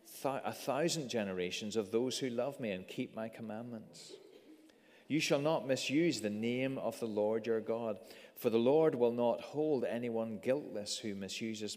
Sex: male